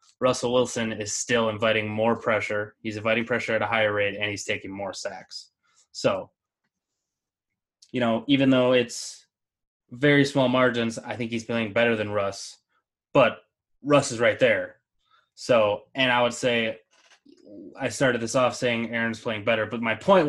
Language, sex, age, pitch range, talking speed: English, male, 20-39, 110-130 Hz, 165 wpm